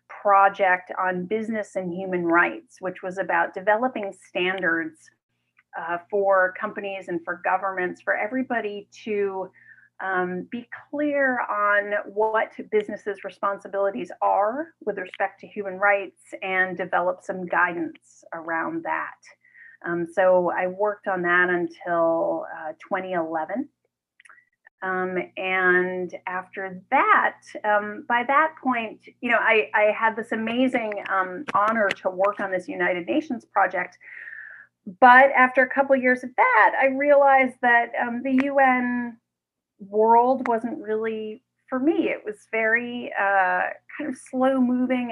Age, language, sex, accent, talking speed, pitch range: 30-49, English, female, American, 130 wpm, 185-255 Hz